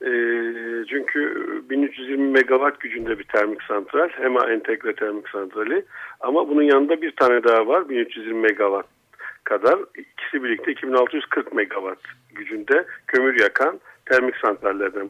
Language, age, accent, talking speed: Turkish, 50-69, native, 120 wpm